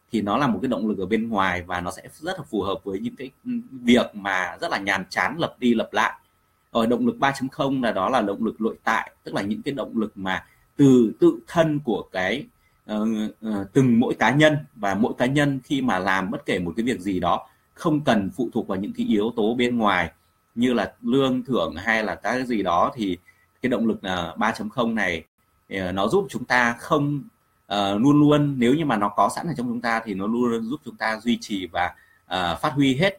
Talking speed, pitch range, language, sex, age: 235 wpm, 100-140 Hz, Vietnamese, male, 30-49